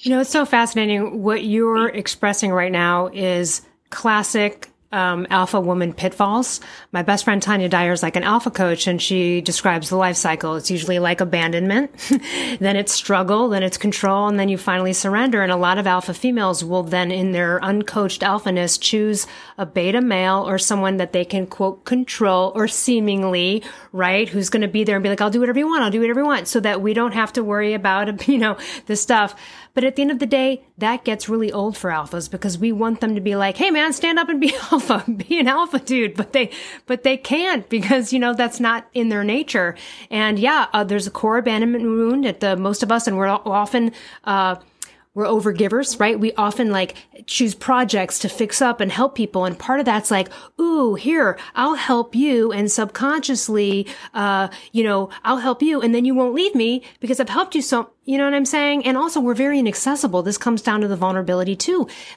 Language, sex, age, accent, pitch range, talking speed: English, female, 30-49, American, 195-250 Hz, 220 wpm